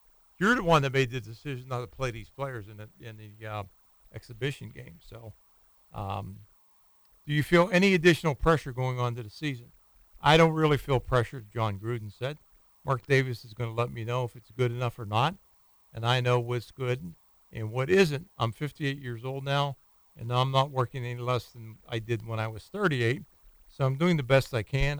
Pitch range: 115-140 Hz